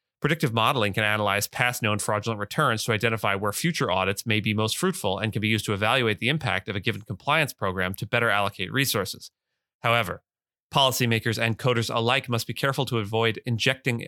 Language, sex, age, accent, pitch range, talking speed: English, male, 30-49, American, 100-120 Hz, 190 wpm